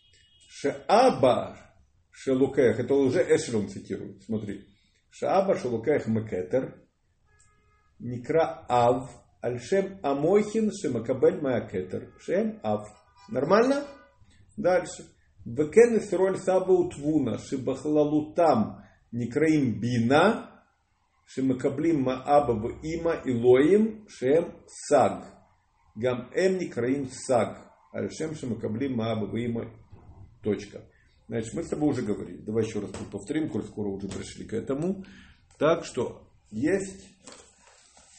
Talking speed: 95 wpm